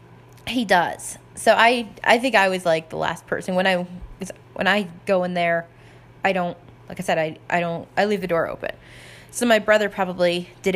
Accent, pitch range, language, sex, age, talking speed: American, 170-225 Hz, English, female, 20-39, 205 wpm